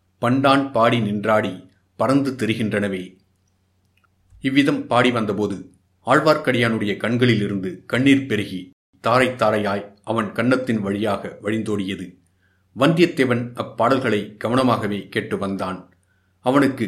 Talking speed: 80 wpm